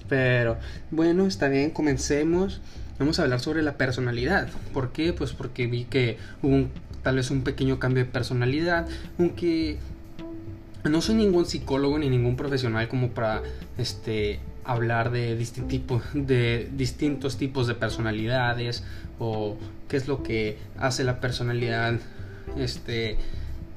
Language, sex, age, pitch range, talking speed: Spanish, male, 20-39, 110-140 Hz, 140 wpm